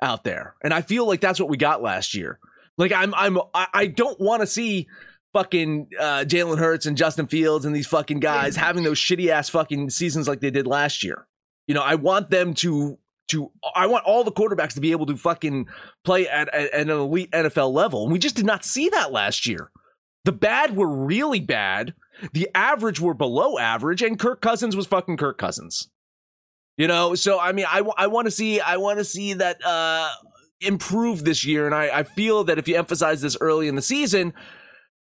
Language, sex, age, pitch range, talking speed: English, male, 30-49, 140-200 Hz, 215 wpm